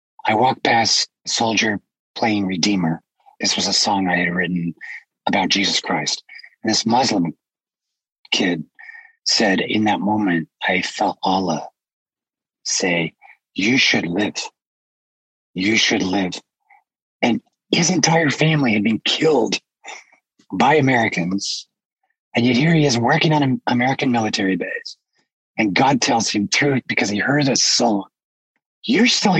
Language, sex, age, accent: English, male, 40-59, American